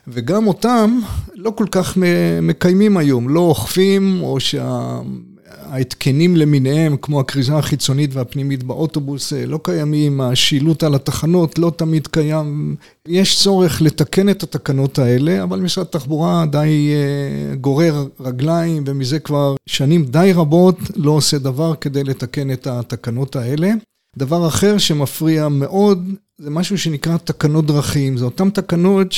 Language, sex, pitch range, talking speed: Hebrew, male, 140-175 Hz, 130 wpm